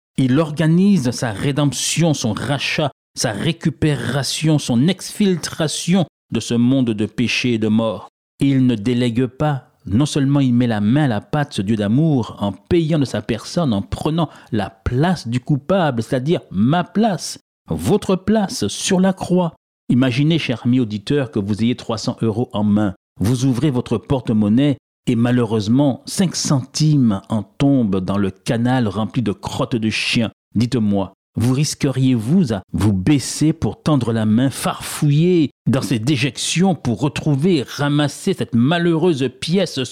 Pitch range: 115-155 Hz